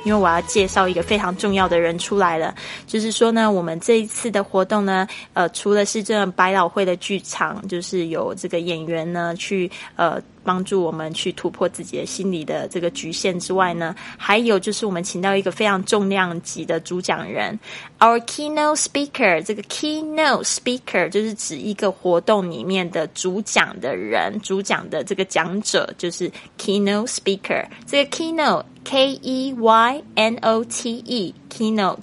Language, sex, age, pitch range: Chinese, female, 20-39, 180-225 Hz